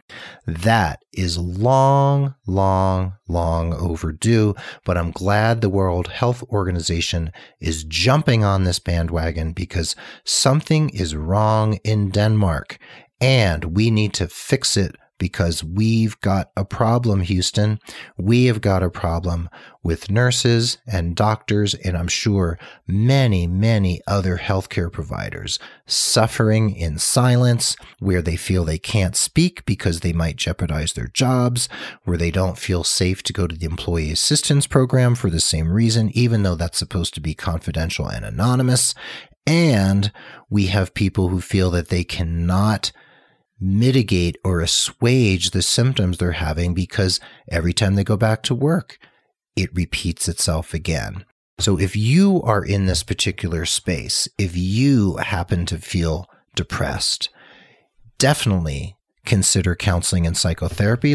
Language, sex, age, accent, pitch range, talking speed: English, male, 40-59, American, 85-115 Hz, 135 wpm